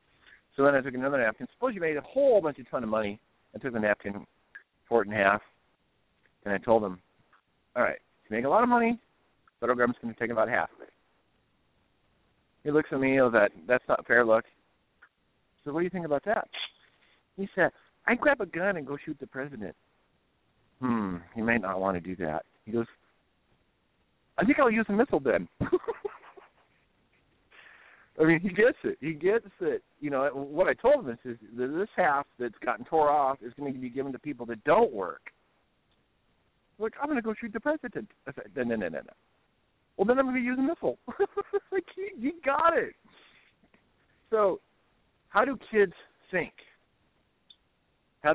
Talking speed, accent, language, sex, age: 195 wpm, American, English, male, 40-59